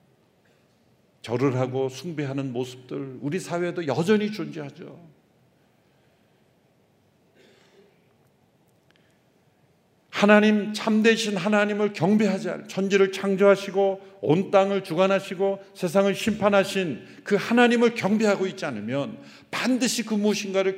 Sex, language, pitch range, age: male, Korean, 135-195 Hz, 50-69